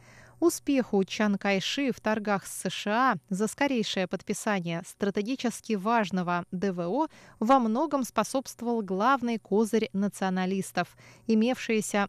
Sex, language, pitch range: female, Russian, 190-255 Hz